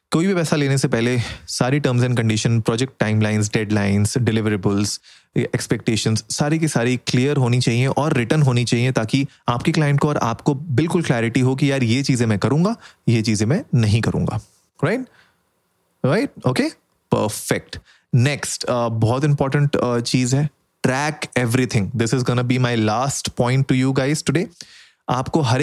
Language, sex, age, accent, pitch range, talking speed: Hindi, male, 30-49, native, 115-150 Hz, 165 wpm